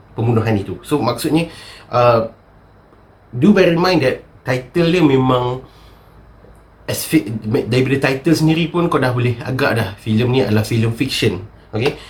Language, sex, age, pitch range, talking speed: Malay, male, 30-49, 105-125 Hz, 145 wpm